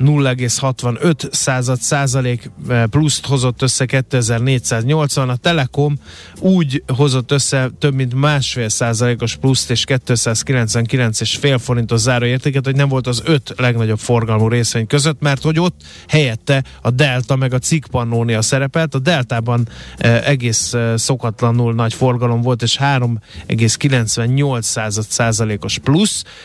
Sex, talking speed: male, 125 wpm